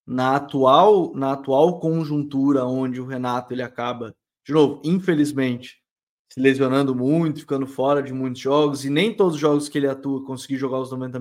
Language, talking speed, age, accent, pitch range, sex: Portuguese, 175 wpm, 20-39, Brazilian, 130-170 Hz, male